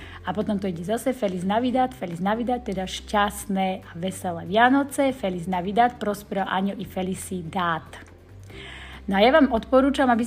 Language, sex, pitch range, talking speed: Slovak, female, 185-225 Hz, 150 wpm